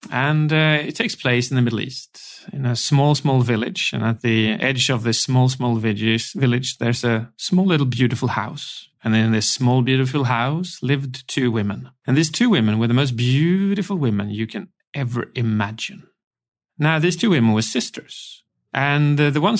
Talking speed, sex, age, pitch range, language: 185 wpm, male, 40-59, 120-155 Hz, English